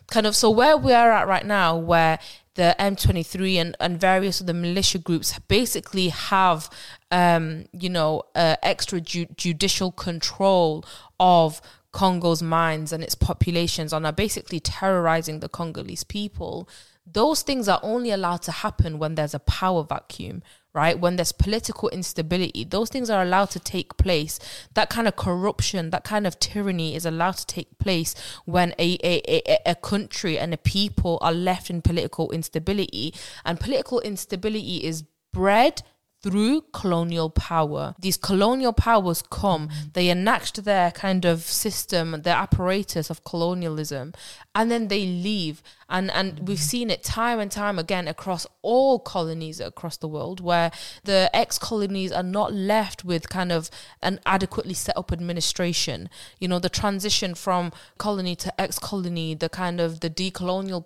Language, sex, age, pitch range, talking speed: English, female, 20-39, 165-200 Hz, 160 wpm